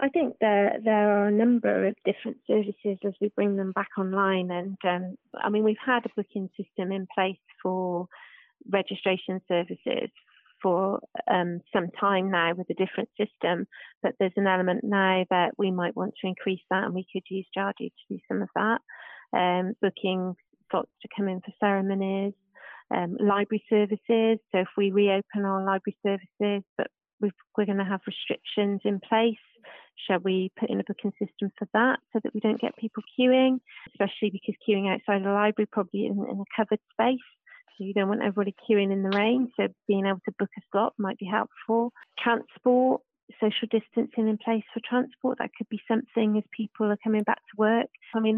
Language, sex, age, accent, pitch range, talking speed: English, female, 30-49, British, 195-220 Hz, 190 wpm